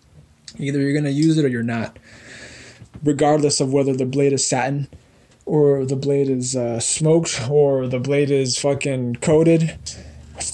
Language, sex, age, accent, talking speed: English, male, 20-39, American, 160 wpm